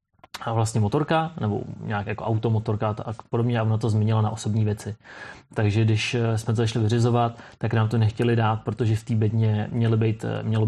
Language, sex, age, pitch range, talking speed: Czech, male, 30-49, 110-120 Hz, 180 wpm